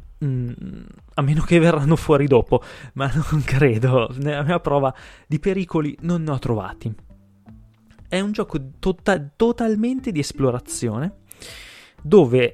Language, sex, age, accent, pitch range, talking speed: Italian, male, 20-39, native, 125-165 Hz, 125 wpm